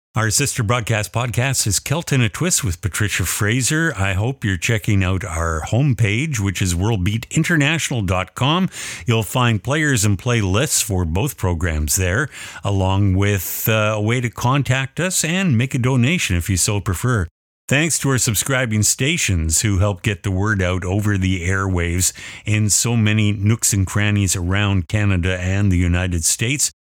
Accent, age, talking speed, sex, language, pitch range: American, 50-69, 160 wpm, male, English, 95-130 Hz